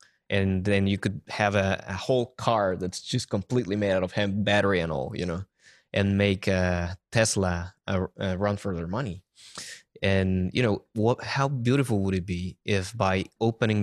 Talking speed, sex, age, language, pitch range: 185 wpm, male, 20-39, English, 95-105 Hz